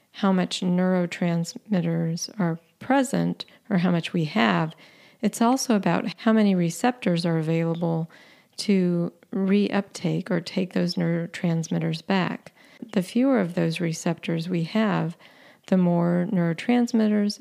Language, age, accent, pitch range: English, 40-59, American, 170-205 Hz